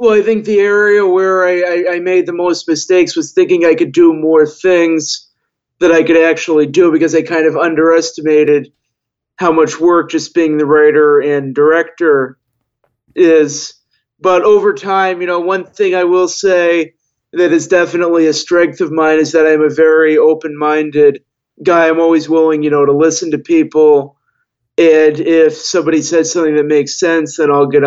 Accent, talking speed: American, 180 wpm